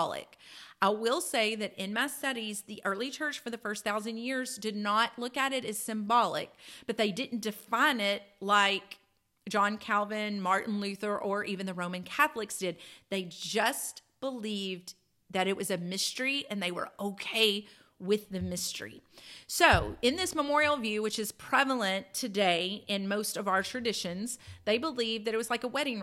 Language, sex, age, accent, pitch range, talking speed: English, female, 40-59, American, 190-255 Hz, 175 wpm